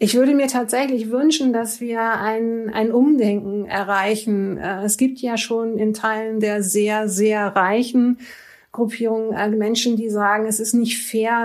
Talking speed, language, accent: 150 wpm, German, German